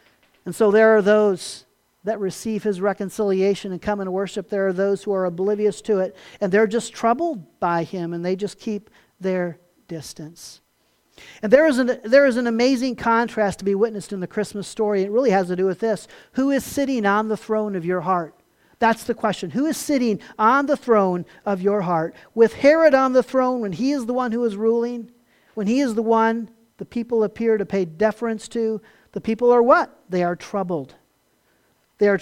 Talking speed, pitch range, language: 205 wpm, 190-230 Hz, English